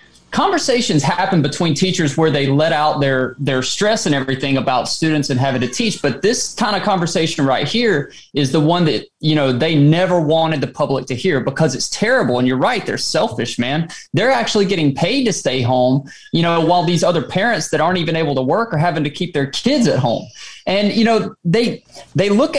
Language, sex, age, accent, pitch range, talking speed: English, male, 20-39, American, 140-200 Hz, 215 wpm